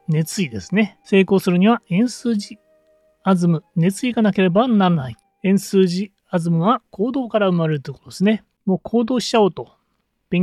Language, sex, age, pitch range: Japanese, male, 30-49, 165-220 Hz